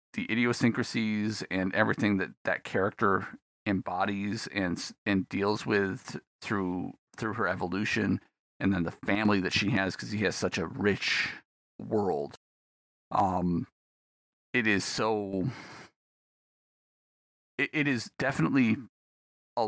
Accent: American